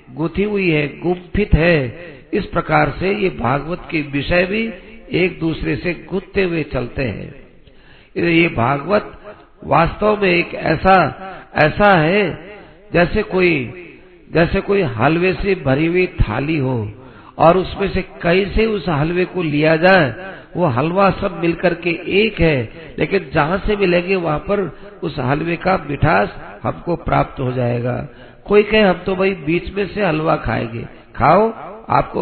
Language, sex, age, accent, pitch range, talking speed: Hindi, male, 50-69, native, 145-195 Hz, 155 wpm